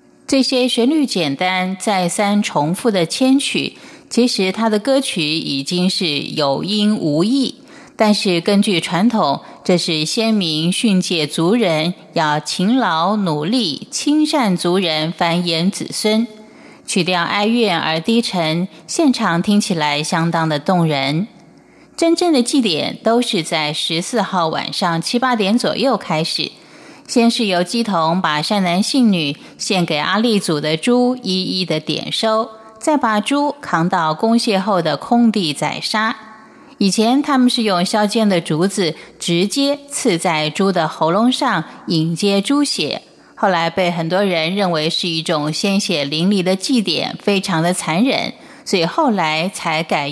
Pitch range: 165-235 Hz